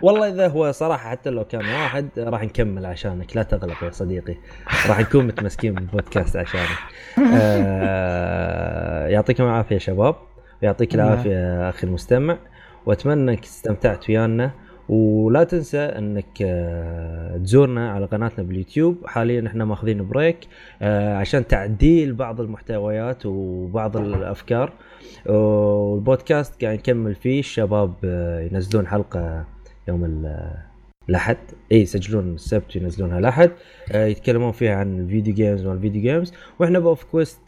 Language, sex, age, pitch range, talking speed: Arabic, male, 20-39, 95-130 Hz, 120 wpm